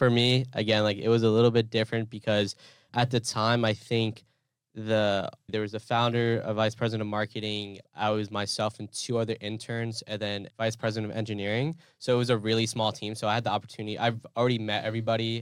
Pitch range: 105-115 Hz